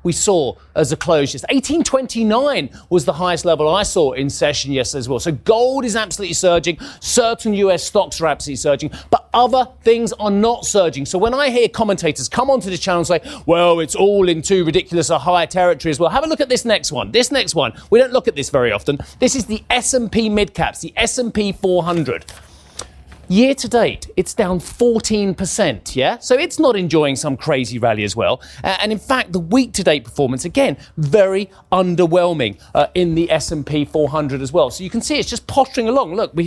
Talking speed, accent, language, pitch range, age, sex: 200 wpm, British, English, 165-230 Hz, 30-49, male